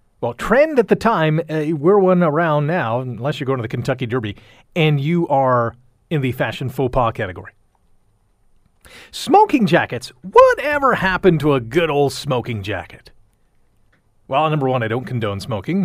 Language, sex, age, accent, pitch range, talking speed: English, male, 40-59, American, 120-175 Hz, 160 wpm